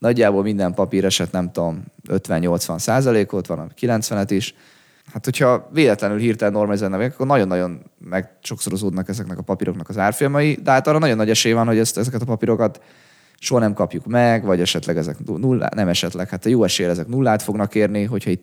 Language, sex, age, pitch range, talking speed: Hungarian, male, 20-39, 95-115 Hz, 180 wpm